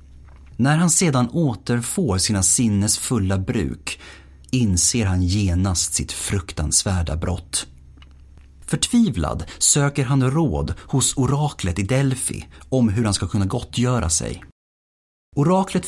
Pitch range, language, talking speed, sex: 85-135 Hz, Swedish, 115 wpm, male